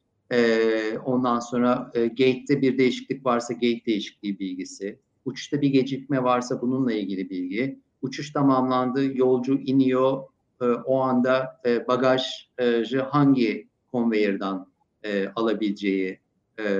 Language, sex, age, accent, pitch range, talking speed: Turkish, male, 50-69, native, 110-140 Hz, 120 wpm